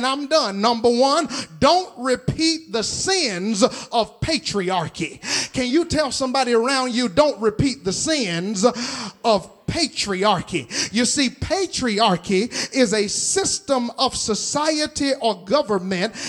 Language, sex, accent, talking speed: English, male, American, 120 wpm